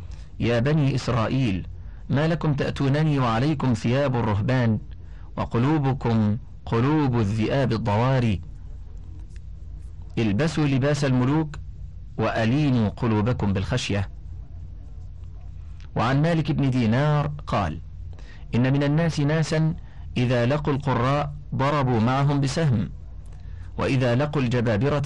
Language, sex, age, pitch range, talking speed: Arabic, male, 50-69, 85-135 Hz, 90 wpm